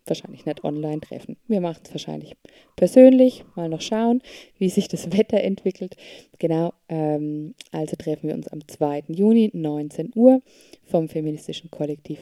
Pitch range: 150-190 Hz